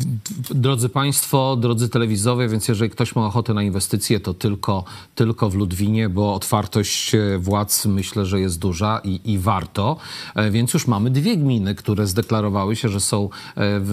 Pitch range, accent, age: 100-135 Hz, native, 40-59